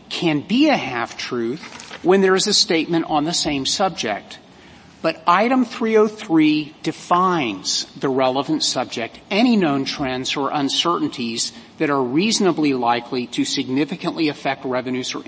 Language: English